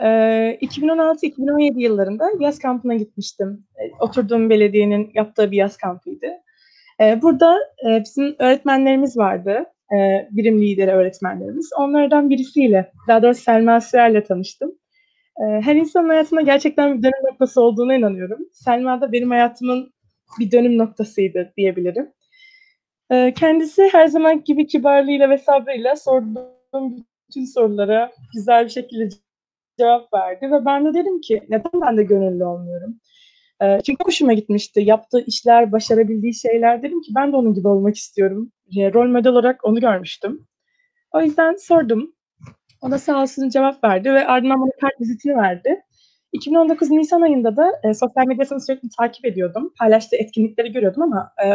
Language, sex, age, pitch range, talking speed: Turkish, female, 20-39, 220-295 Hz, 135 wpm